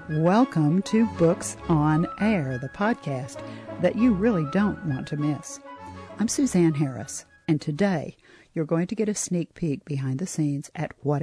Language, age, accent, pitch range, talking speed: English, 50-69, American, 140-180 Hz, 165 wpm